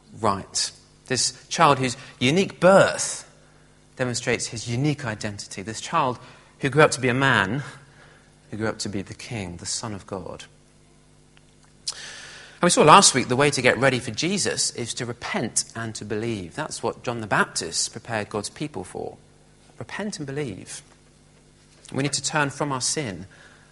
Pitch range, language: 100-135 Hz, English